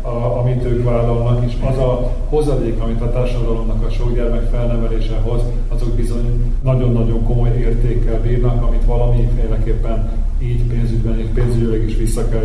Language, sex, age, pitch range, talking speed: Hungarian, male, 30-49, 110-120 Hz, 135 wpm